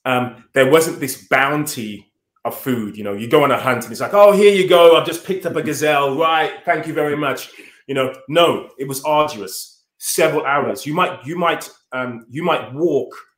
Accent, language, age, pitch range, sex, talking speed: British, English, 20-39, 125-155 Hz, male, 215 wpm